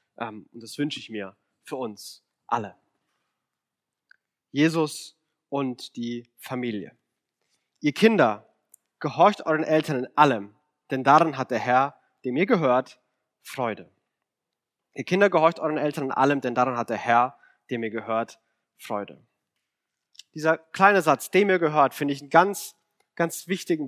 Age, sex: 30-49, male